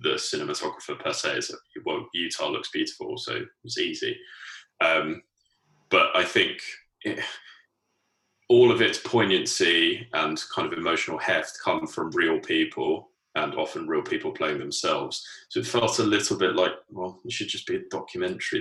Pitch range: 345-390 Hz